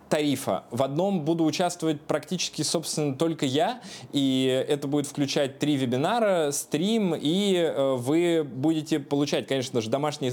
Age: 20-39